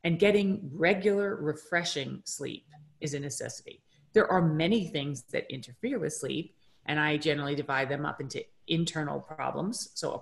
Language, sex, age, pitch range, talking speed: English, female, 40-59, 145-180 Hz, 160 wpm